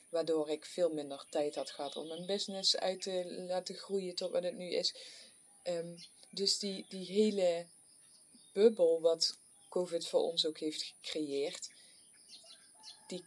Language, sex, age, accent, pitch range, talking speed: English, female, 20-39, Dutch, 170-205 Hz, 145 wpm